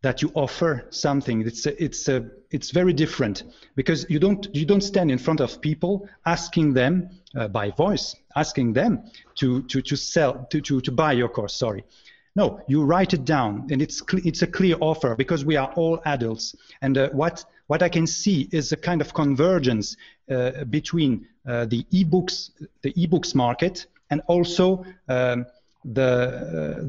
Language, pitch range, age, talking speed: English, 130-175 Hz, 40-59, 180 wpm